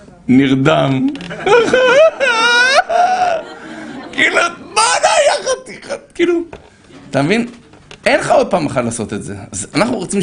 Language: Hebrew